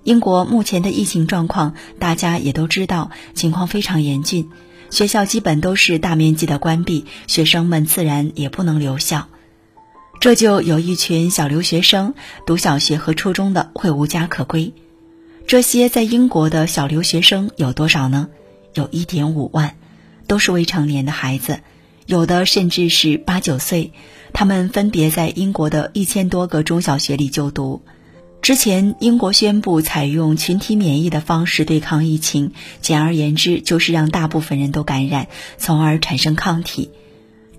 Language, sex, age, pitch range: Chinese, female, 30-49, 150-185 Hz